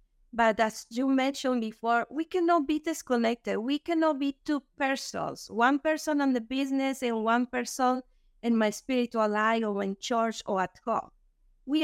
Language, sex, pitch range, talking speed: English, female, 220-265 Hz, 165 wpm